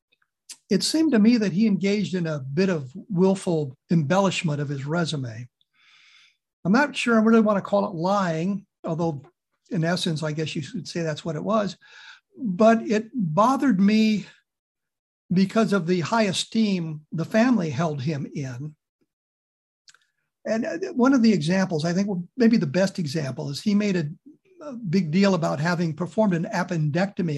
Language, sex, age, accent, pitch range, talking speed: English, male, 60-79, American, 160-205 Hz, 160 wpm